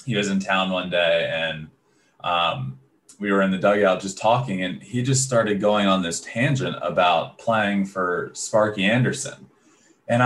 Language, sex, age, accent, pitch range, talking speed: English, male, 20-39, American, 95-120 Hz, 170 wpm